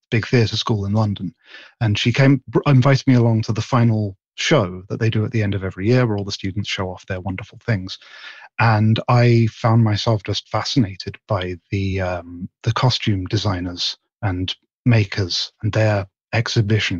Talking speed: 175 wpm